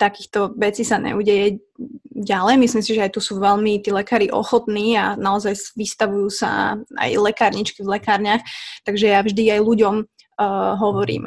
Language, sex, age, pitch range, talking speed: Slovak, female, 20-39, 205-230 Hz, 160 wpm